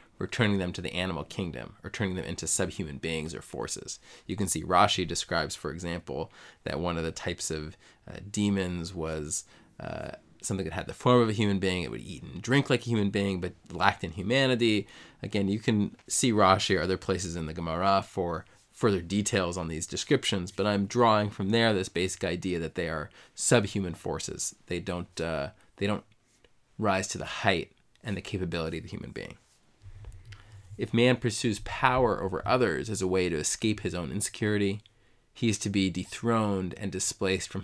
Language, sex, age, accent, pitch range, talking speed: English, male, 20-39, American, 90-105 Hz, 195 wpm